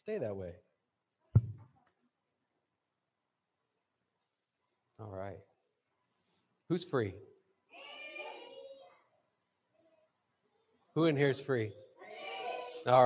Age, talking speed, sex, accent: 30-49, 60 wpm, male, American